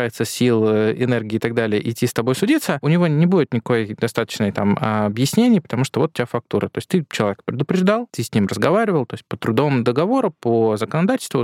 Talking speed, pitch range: 205 wpm, 115-155 Hz